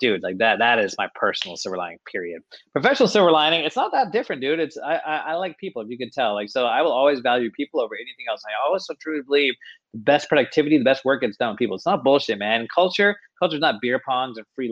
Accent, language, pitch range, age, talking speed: American, English, 125-160 Hz, 30-49, 265 wpm